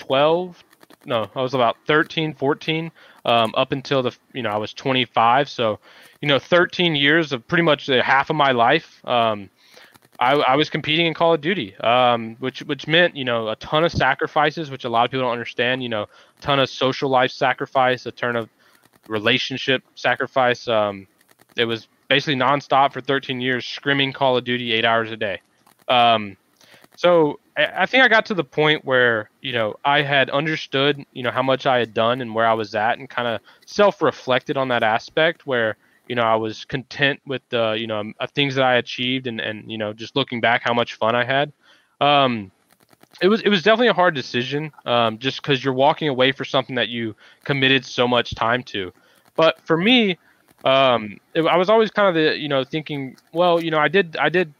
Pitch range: 120-155 Hz